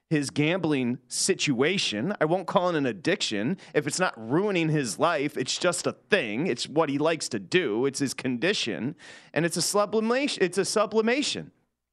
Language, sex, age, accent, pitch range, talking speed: English, male, 30-49, American, 125-185 Hz, 175 wpm